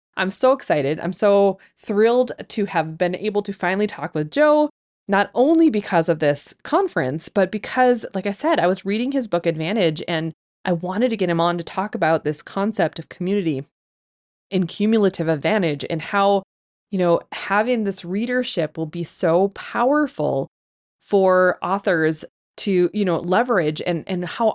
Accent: American